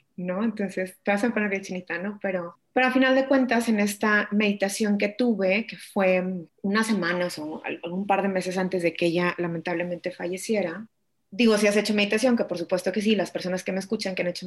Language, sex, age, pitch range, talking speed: Spanish, female, 20-39, 185-235 Hz, 225 wpm